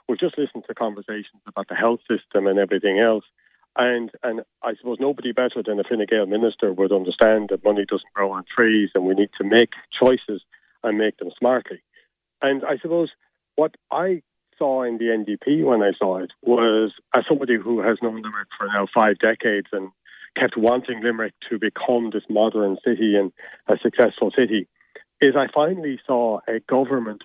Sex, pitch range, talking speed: male, 105-125 Hz, 190 wpm